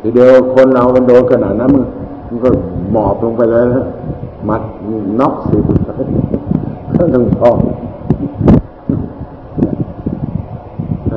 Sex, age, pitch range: male, 60-79, 105-130 Hz